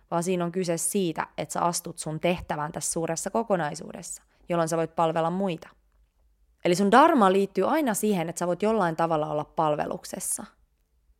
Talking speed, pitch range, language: 165 wpm, 160-220 Hz, Finnish